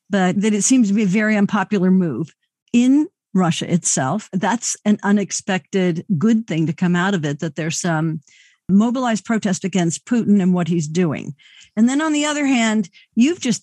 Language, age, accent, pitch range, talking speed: English, 50-69, American, 180-215 Hz, 185 wpm